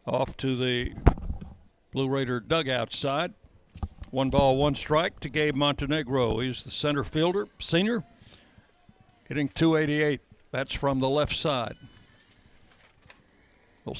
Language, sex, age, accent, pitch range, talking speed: English, male, 60-79, American, 125-155 Hz, 115 wpm